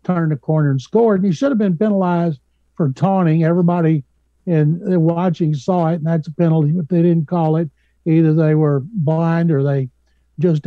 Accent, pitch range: American, 150-185 Hz